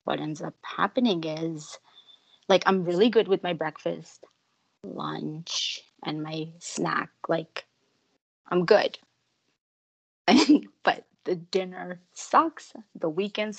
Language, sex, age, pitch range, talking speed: English, female, 30-49, 175-255 Hz, 110 wpm